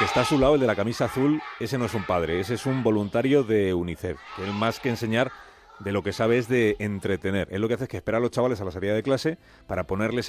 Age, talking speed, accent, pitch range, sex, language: 40-59, 285 wpm, Spanish, 95-120 Hz, male, Spanish